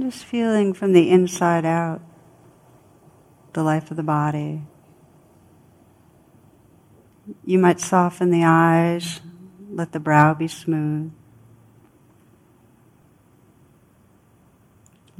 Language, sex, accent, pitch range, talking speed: English, female, American, 155-175 Hz, 85 wpm